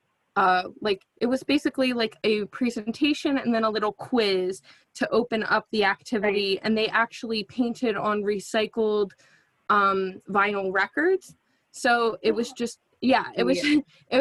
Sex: female